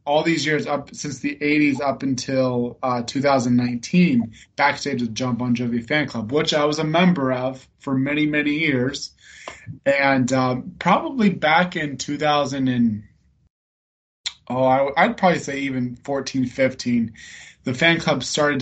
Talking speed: 155 wpm